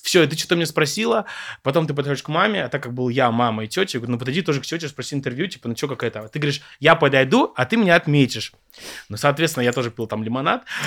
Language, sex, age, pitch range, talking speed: Russian, male, 20-39, 115-145 Hz, 265 wpm